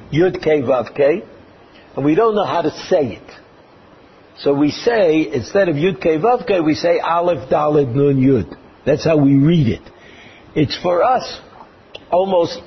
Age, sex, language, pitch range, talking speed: 60-79, male, English, 135-180 Hz, 170 wpm